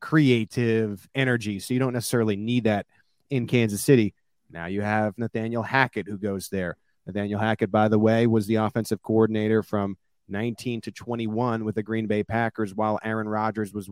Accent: American